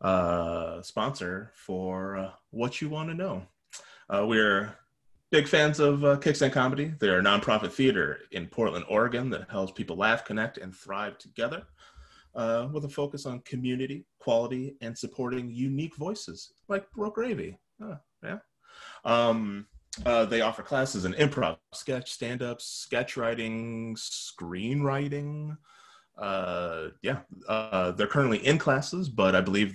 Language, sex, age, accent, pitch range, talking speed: English, male, 30-49, American, 105-140 Hz, 145 wpm